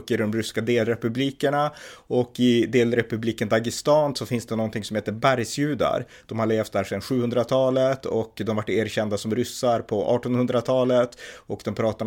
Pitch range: 105-120 Hz